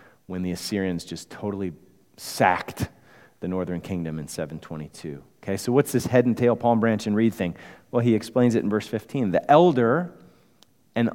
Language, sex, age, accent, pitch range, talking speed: English, male, 40-59, American, 90-125 Hz, 180 wpm